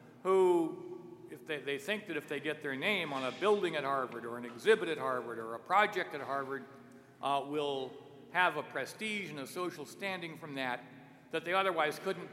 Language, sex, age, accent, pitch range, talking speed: English, male, 60-79, American, 130-175 Hz, 200 wpm